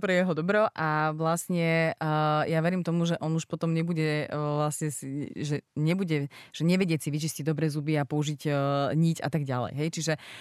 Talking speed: 190 wpm